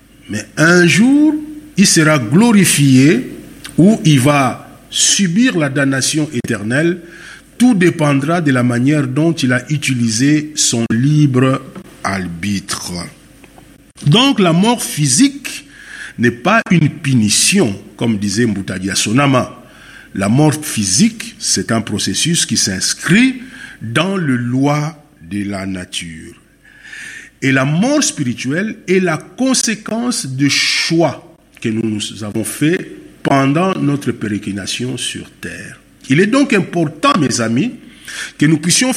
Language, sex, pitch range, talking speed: English, male, 120-190 Hz, 120 wpm